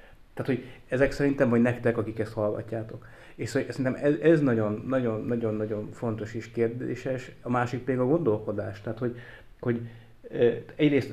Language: Hungarian